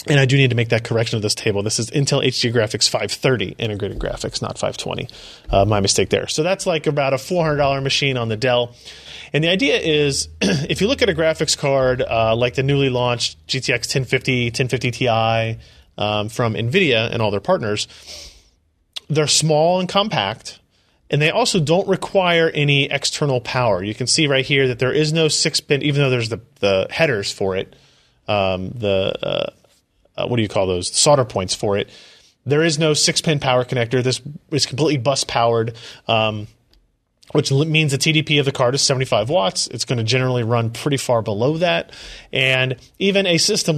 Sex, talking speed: male, 190 wpm